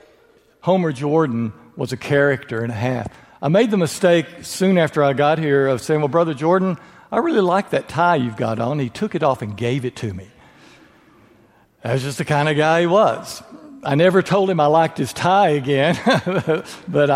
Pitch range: 135-170 Hz